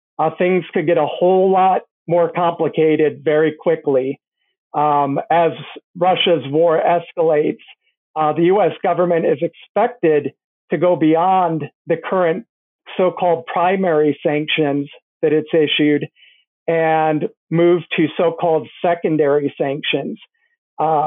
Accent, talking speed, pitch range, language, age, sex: American, 115 wpm, 150-175 Hz, English, 50-69, male